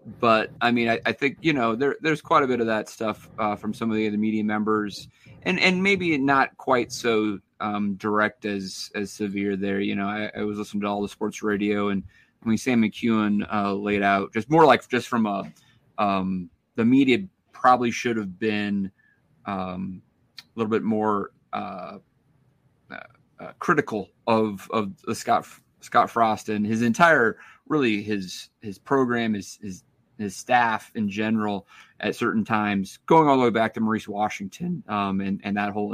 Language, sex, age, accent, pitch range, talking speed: English, male, 30-49, American, 100-115 Hz, 185 wpm